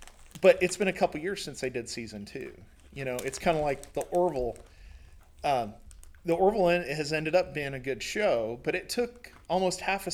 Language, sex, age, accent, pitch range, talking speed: English, male, 40-59, American, 110-170 Hz, 205 wpm